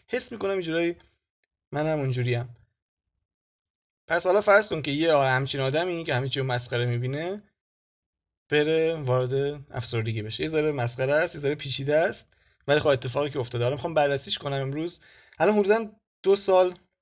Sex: male